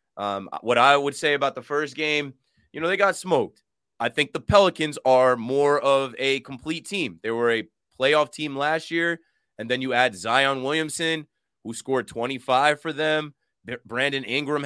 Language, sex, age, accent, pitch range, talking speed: English, male, 20-39, American, 120-150 Hz, 180 wpm